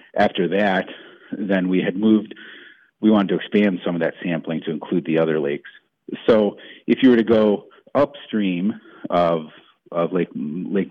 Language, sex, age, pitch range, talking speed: English, male, 40-59, 85-100 Hz, 165 wpm